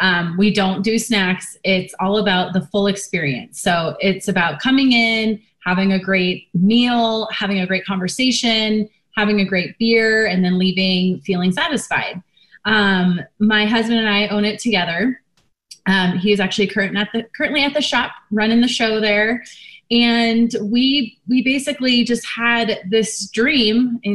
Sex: female